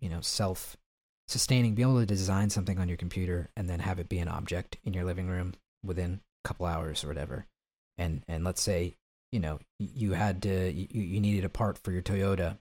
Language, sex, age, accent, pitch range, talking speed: English, male, 40-59, American, 90-105 Hz, 215 wpm